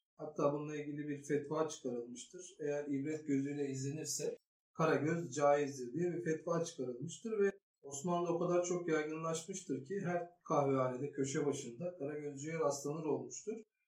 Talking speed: 140 wpm